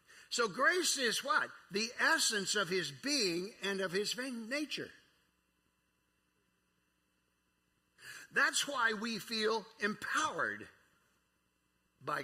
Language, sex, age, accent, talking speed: English, male, 50-69, American, 95 wpm